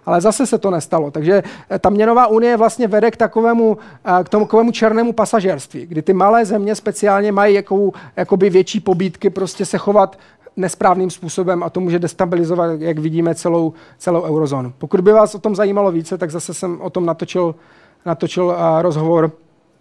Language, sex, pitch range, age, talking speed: Czech, male, 165-210 Hz, 40-59, 165 wpm